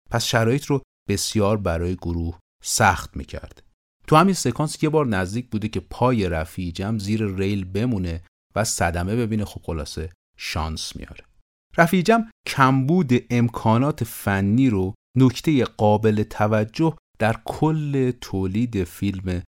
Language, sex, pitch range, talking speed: Persian, male, 90-120 Hz, 125 wpm